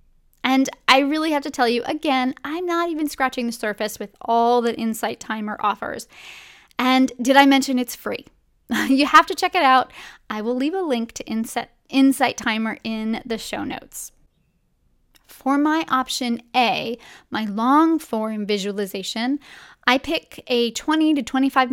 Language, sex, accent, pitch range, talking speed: English, female, American, 220-265 Hz, 160 wpm